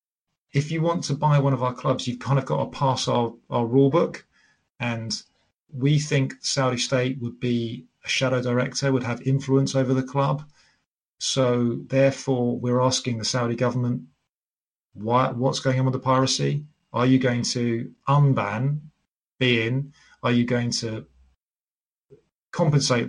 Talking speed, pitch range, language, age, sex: 160 wpm, 120-140 Hz, Persian, 30-49, male